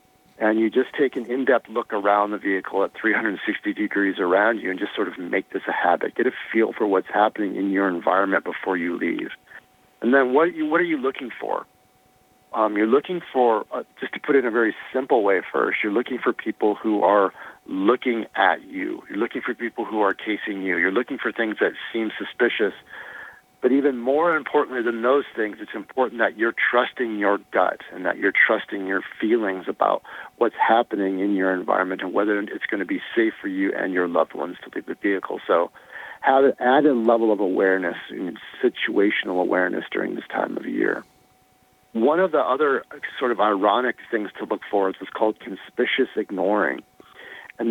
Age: 50-69